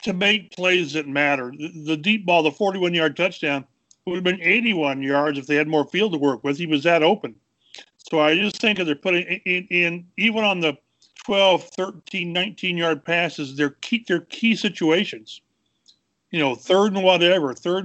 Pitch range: 155-190 Hz